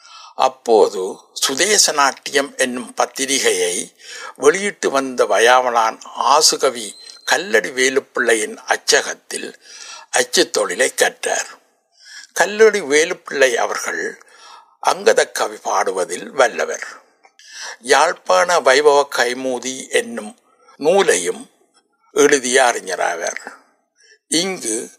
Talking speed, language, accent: 70 wpm, Tamil, native